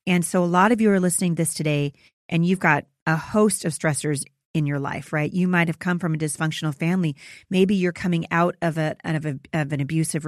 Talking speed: 240 wpm